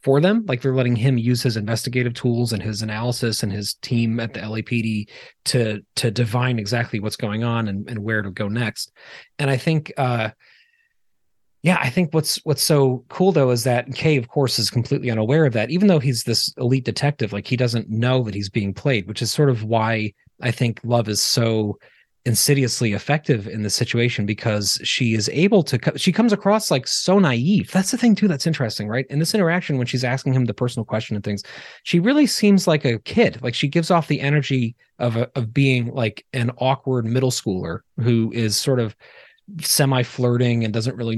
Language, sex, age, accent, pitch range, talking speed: English, male, 30-49, American, 115-140 Hz, 210 wpm